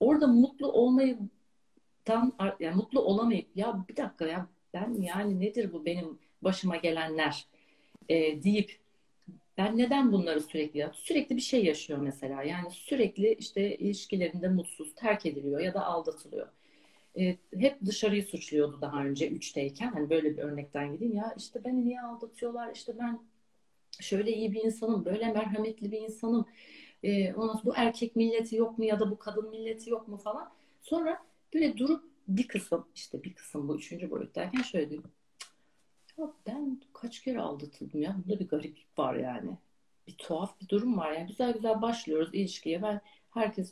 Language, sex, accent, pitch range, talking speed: Turkish, female, native, 175-240 Hz, 160 wpm